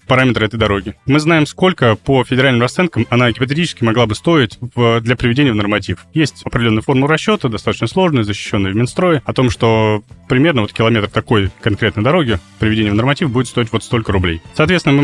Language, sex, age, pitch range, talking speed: Russian, male, 20-39, 105-130 Hz, 185 wpm